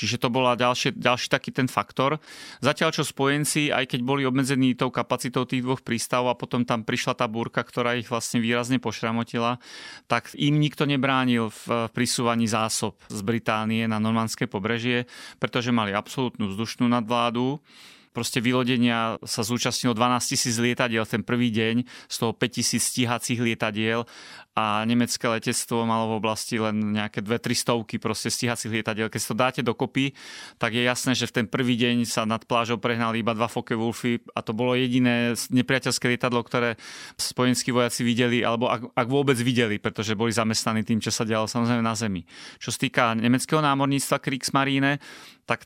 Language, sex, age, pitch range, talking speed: Slovak, male, 30-49, 115-130 Hz, 170 wpm